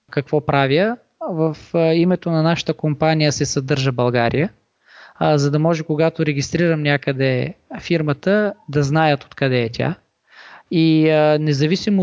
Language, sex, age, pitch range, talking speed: Bulgarian, male, 20-39, 145-165 Hz, 125 wpm